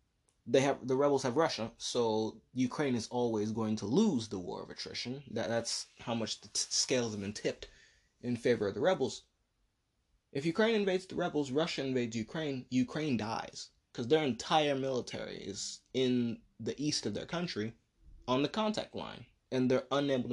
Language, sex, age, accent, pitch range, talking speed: English, male, 20-39, American, 115-145 Hz, 175 wpm